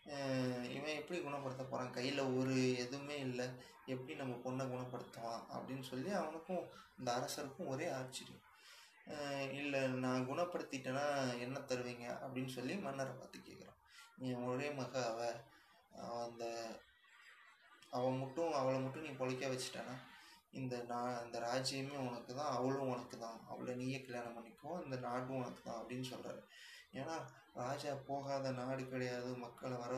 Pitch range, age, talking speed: 125-135 Hz, 20-39, 120 wpm